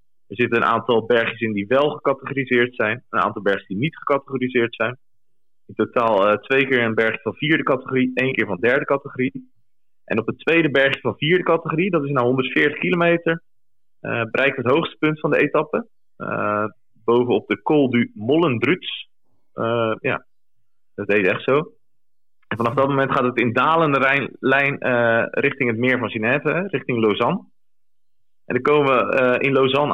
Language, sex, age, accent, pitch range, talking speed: Dutch, male, 30-49, Dutch, 115-140 Hz, 180 wpm